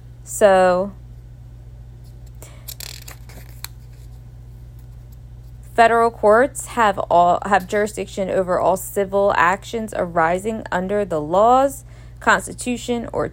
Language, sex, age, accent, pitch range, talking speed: English, female, 20-39, American, 120-200 Hz, 75 wpm